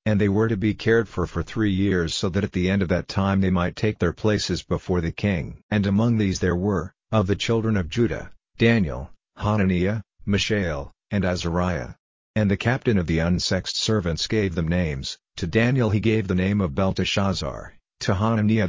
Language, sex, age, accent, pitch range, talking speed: English, male, 50-69, American, 90-105 Hz, 195 wpm